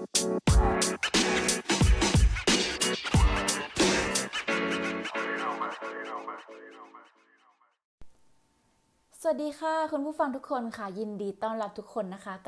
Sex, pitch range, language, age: female, 175-230 Hz, Thai, 20-39